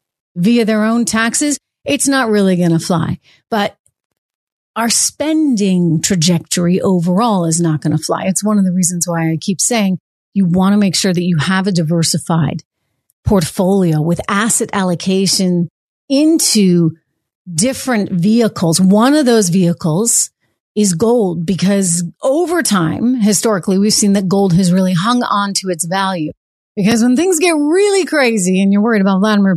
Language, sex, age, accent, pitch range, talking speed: English, female, 30-49, American, 180-225 Hz, 160 wpm